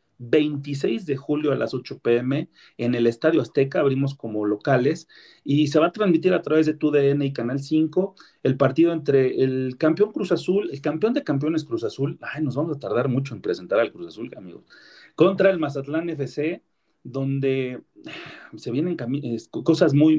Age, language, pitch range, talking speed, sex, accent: 40-59, Spanish, 130-160 Hz, 180 wpm, male, Mexican